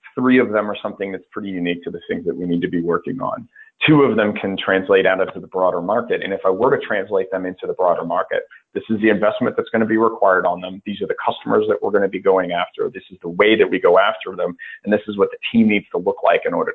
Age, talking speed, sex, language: 30-49, 285 wpm, male, English